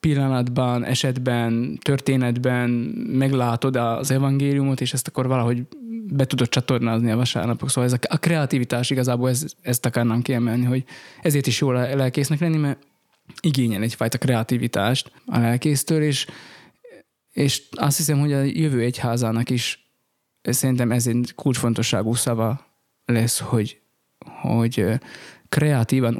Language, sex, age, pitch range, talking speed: Hungarian, male, 20-39, 120-140 Hz, 125 wpm